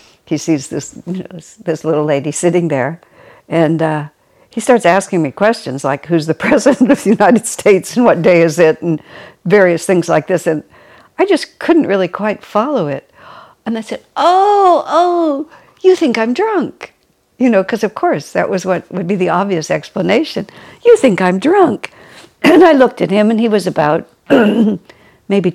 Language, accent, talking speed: English, American, 190 wpm